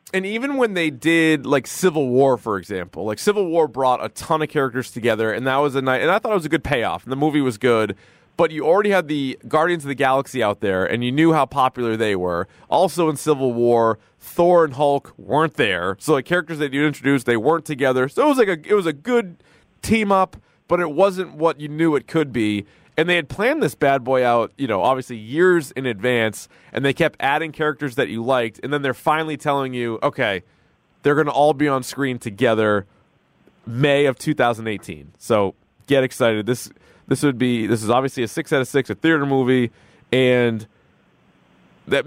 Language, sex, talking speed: English, male, 215 wpm